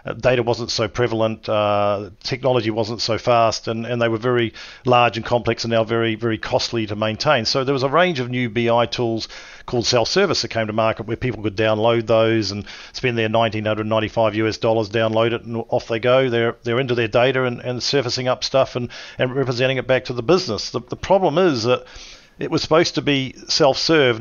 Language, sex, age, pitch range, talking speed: English, male, 50-69, 115-130 Hz, 210 wpm